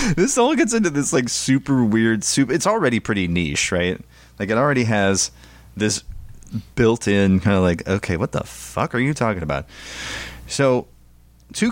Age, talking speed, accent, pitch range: 30-49, 175 wpm, American, 80-115 Hz